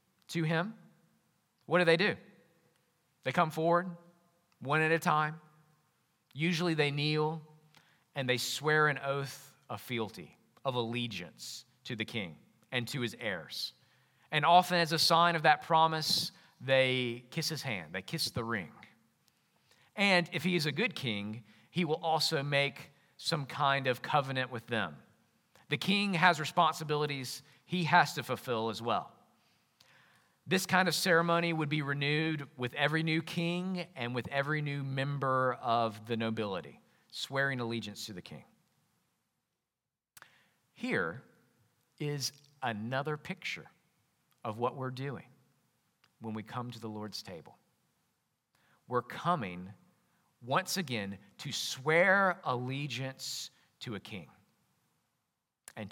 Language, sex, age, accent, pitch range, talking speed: English, male, 40-59, American, 125-165 Hz, 135 wpm